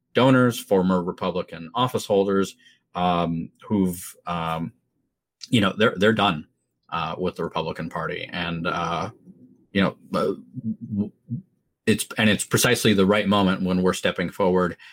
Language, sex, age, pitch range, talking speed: English, male, 30-49, 90-105 Hz, 135 wpm